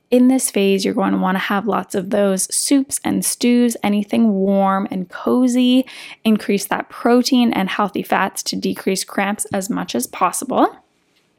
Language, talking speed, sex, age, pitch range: English, 170 wpm, female, 10-29, 195-245 Hz